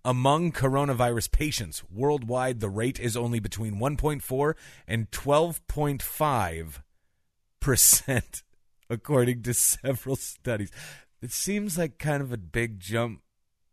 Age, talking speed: 30-49, 105 wpm